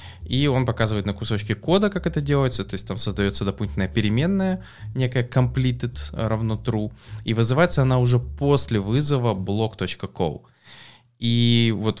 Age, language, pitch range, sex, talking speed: 20-39, English, 100-125 Hz, male, 140 wpm